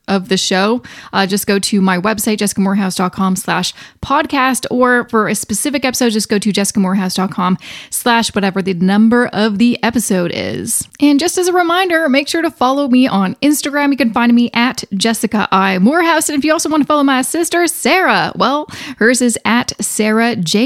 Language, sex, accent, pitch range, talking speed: English, female, American, 200-270 Hz, 190 wpm